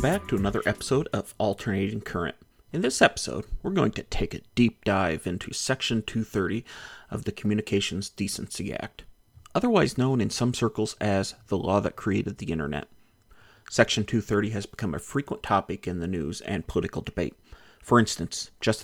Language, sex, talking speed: English, male, 170 wpm